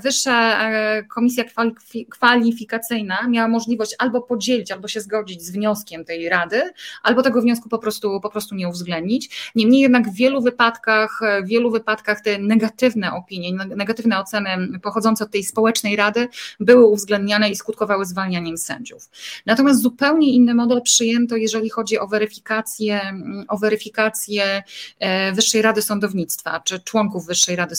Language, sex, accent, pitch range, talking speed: Polish, female, native, 195-230 Hz, 140 wpm